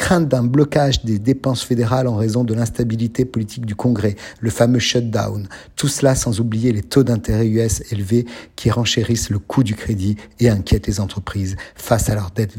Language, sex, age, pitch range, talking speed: French, male, 50-69, 105-125 Hz, 195 wpm